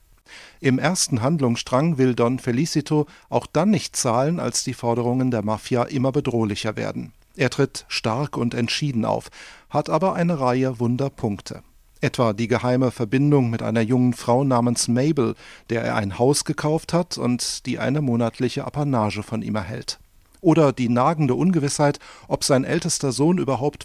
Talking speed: 155 wpm